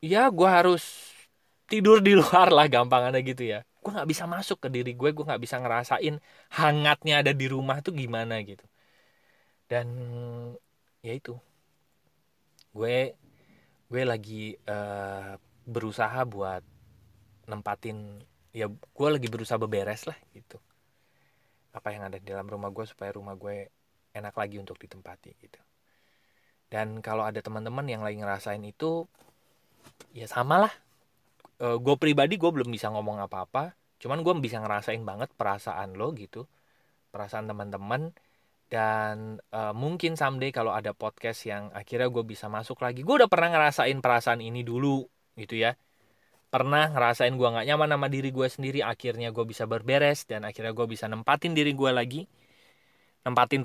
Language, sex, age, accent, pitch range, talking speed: Indonesian, male, 20-39, native, 110-140 Hz, 150 wpm